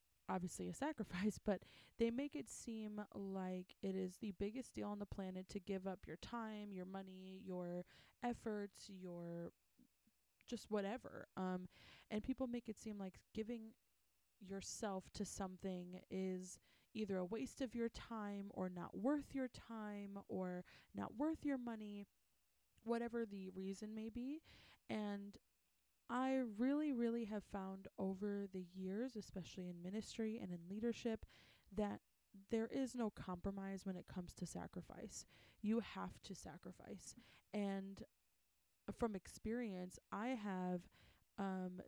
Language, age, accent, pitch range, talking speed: English, 20-39, American, 185-230 Hz, 140 wpm